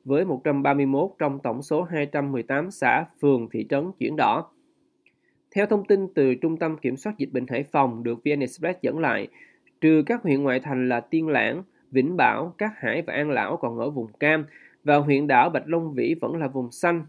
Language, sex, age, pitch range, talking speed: Vietnamese, male, 20-39, 130-160 Hz, 205 wpm